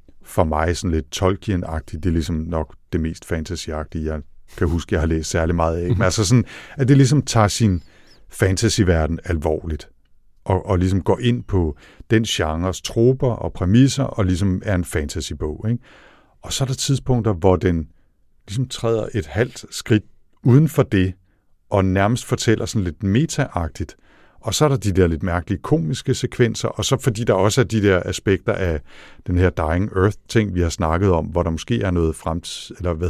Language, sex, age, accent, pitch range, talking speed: Danish, male, 60-79, native, 85-110 Hz, 190 wpm